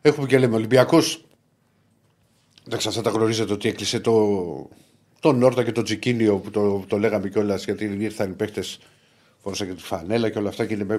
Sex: male